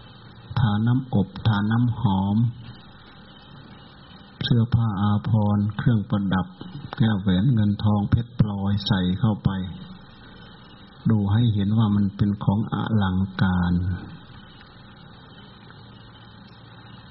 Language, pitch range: Thai, 100-115 Hz